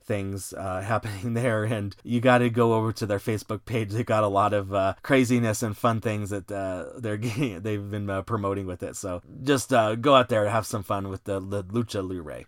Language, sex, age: English, male, 30-49